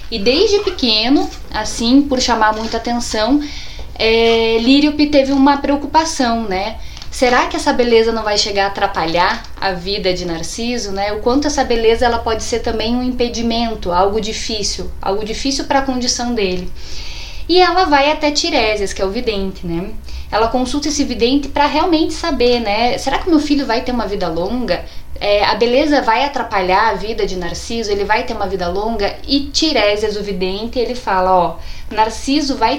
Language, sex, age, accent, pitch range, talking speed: Portuguese, female, 10-29, Brazilian, 205-280 Hz, 175 wpm